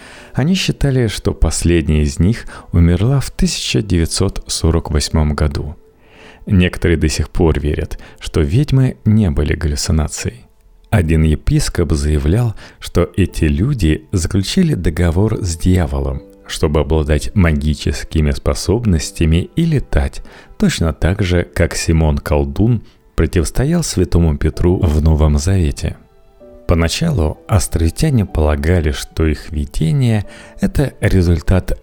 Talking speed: 105 wpm